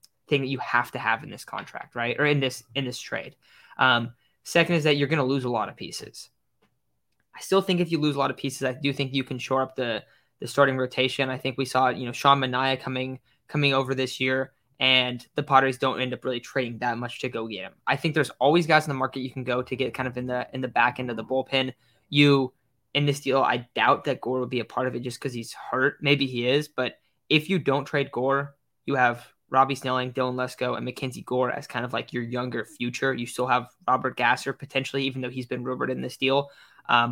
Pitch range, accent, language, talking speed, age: 125-140 Hz, American, English, 255 wpm, 20-39